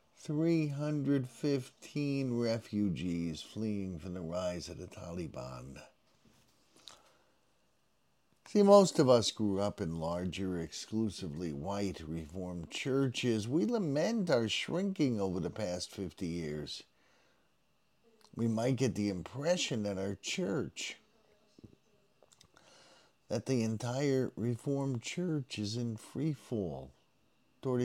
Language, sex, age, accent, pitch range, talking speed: English, male, 50-69, American, 95-135 Hz, 105 wpm